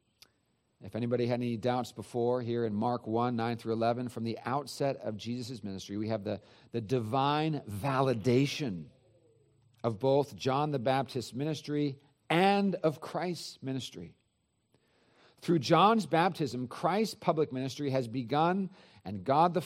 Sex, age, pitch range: male, 50-69, 105-135 Hz